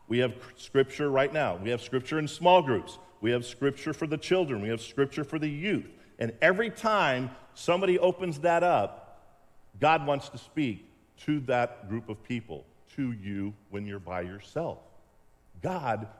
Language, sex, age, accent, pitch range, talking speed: English, male, 50-69, American, 110-160 Hz, 170 wpm